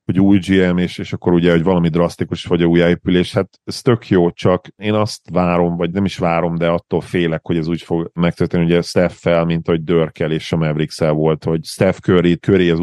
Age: 40-59